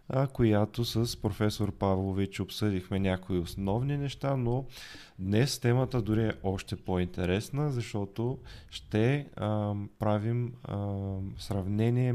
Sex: male